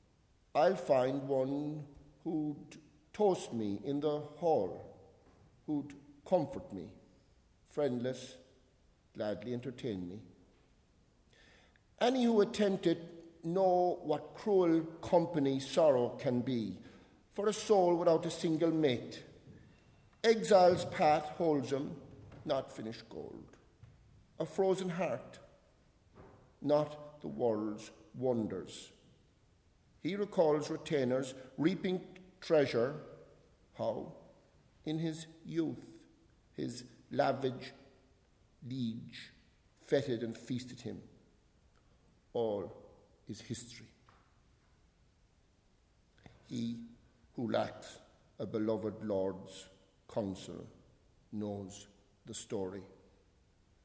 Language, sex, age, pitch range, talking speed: English, male, 50-69, 105-160 Hz, 85 wpm